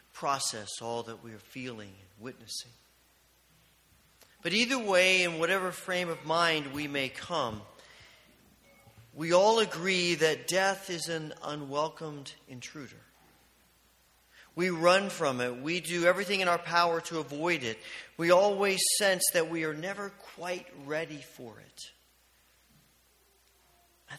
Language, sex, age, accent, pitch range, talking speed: English, male, 40-59, American, 110-160 Hz, 130 wpm